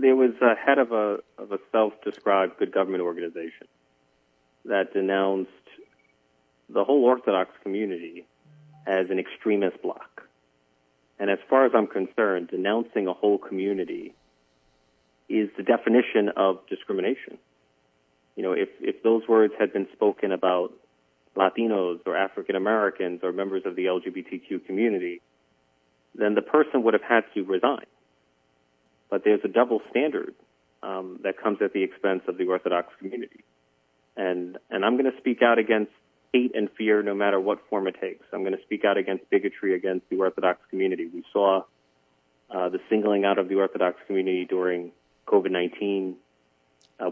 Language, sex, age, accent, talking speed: English, male, 40-59, American, 155 wpm